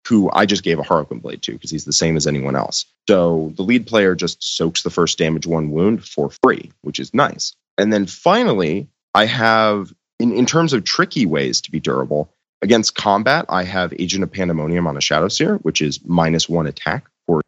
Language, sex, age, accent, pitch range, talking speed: English, male, 30-49, American, 85-120 Hz, 215 wpm